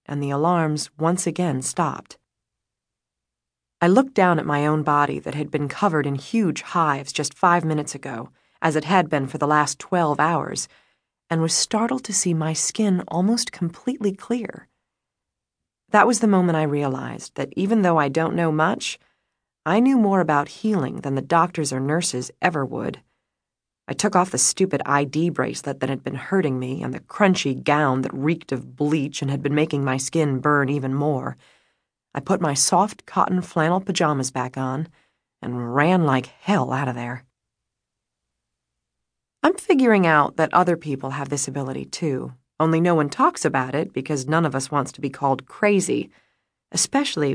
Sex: female